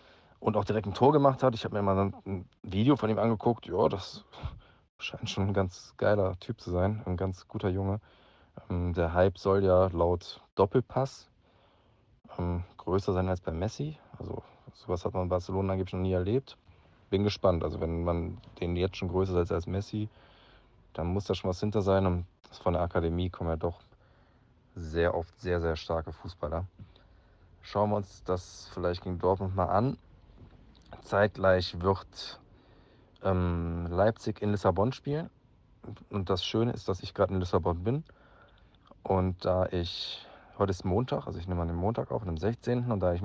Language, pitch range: German, 90-110 Hz